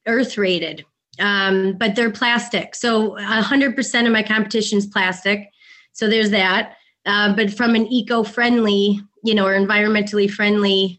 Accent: American